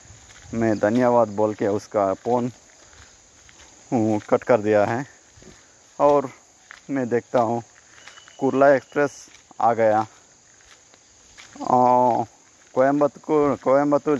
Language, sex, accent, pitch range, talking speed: Telugu, male, native, 115-130 Hz, 90 wpm